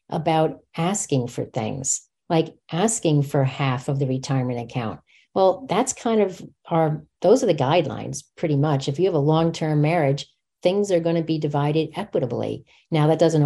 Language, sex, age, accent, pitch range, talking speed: English, female, 50-69, American, 150-190 Hz, 175 wpm